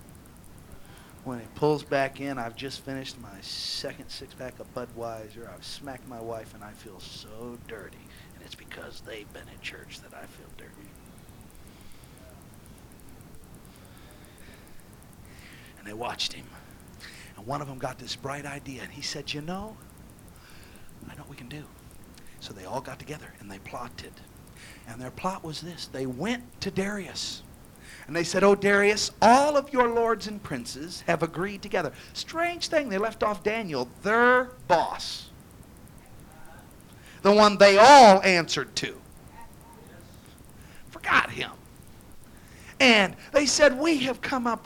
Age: 40-59